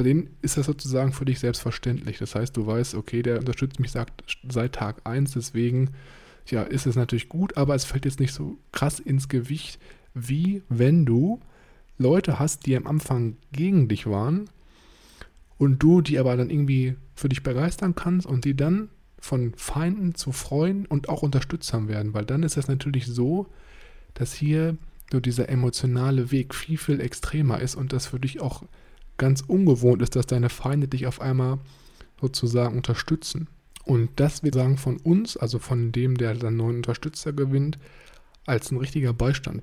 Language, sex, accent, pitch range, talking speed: German, male, German, 125-145 Hz, 175 wpm